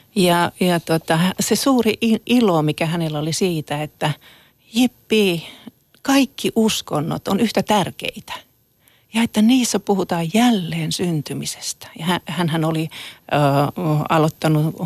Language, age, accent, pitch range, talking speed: Finnish, 40-59, native, 155-190 Hz, 115 wpm